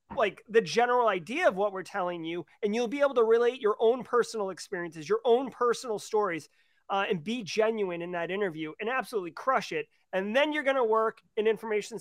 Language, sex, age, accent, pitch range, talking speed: English, male, 30-49, American, 210-260 Hz, 205 wpm